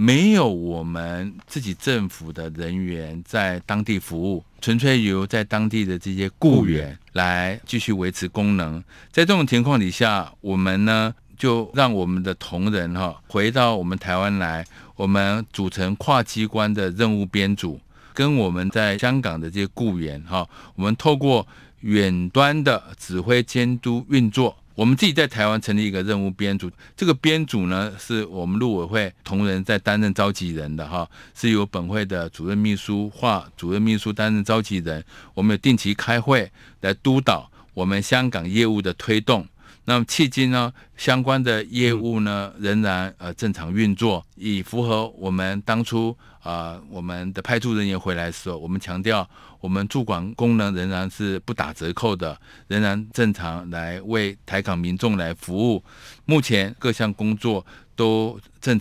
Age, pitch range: 50-69, 95-115 Hz